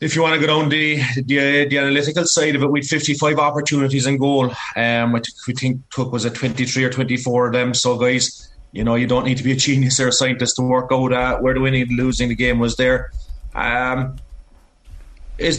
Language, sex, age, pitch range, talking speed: English, male, 30-49, 125-140 Hz, 245 wpm